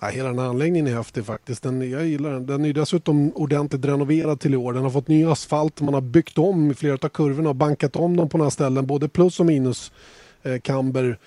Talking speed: 245 wpm